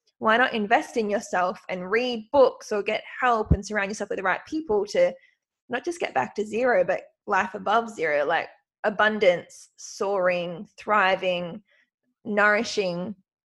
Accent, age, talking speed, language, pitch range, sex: Australian, 20-39, 150 wpm, English, 195-255 Hz, female